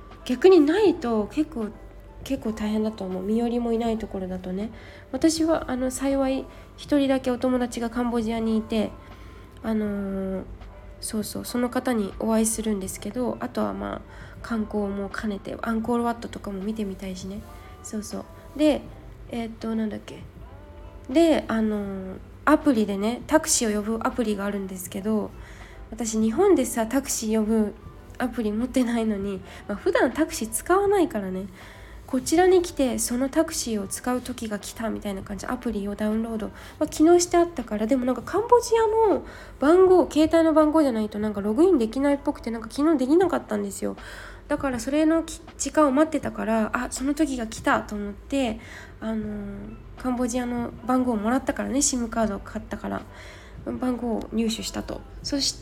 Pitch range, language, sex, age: 210-280 Hz, Japanese, female, 20-39